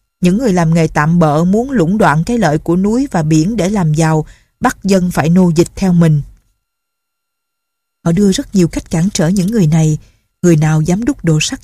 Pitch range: 160-205 Hz